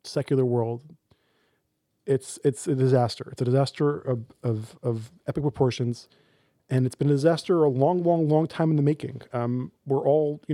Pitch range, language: 120-140 Hz, English